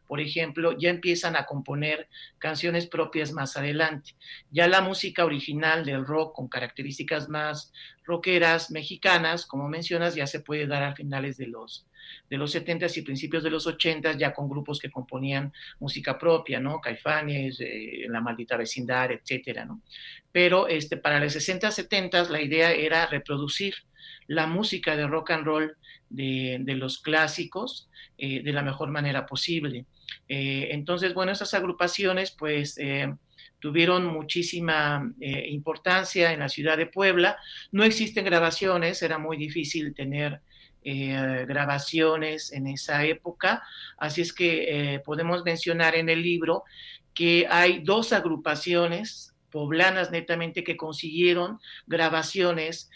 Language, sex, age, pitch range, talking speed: Spanish, male, 50-69, 145-170 Hz, 140 wpm